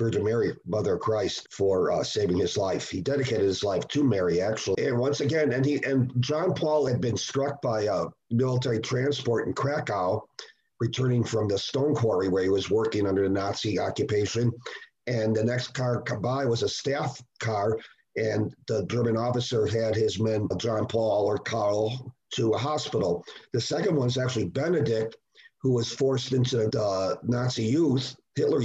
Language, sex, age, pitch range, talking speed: English, male, 50-69, 110-135 Hz, 175 wpm